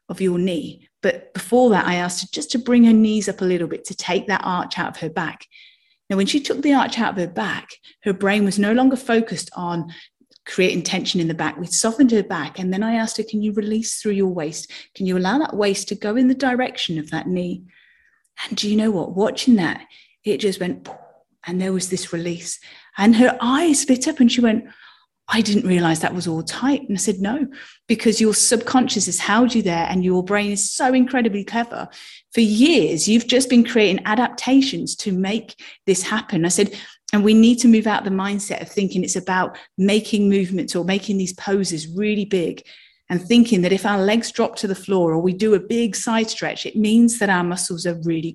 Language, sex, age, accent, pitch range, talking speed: English, female, 30-49, British, 185-235 Hz, 225 wpm